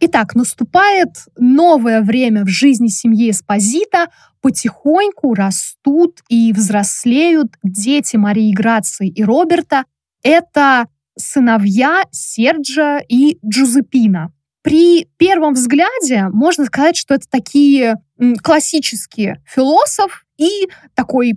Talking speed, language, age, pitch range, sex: 95 wpm, Russian, 20-39, 225-295 Hz, female